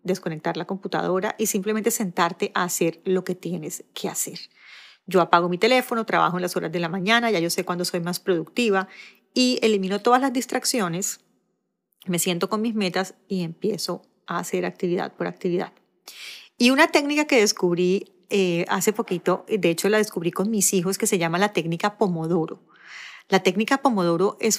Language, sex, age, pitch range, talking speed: Spanish, female, 30-49, 180-220 Hz, 180 wpm